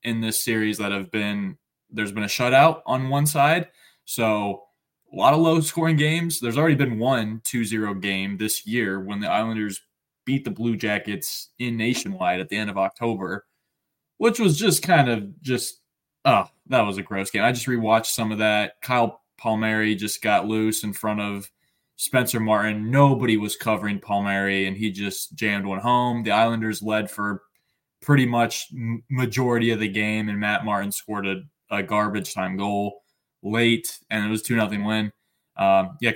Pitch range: 105-130 Hz